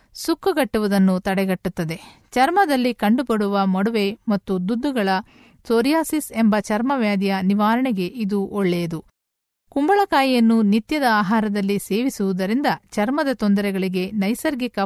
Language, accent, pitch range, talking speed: Kannada, native, 200-255 Hz, 80 wpm